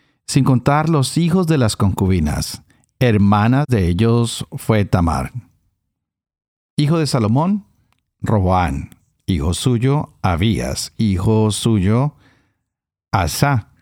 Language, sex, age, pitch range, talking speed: Spanish, male, 50-69, 100-130 Hz, 95 wpm